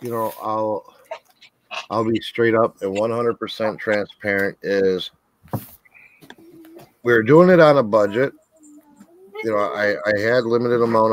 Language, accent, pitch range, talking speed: English, American, 105-130 Hz, 140 wpm